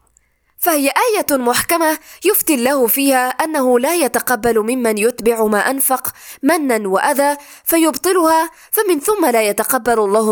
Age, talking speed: 20-39, 120 wpm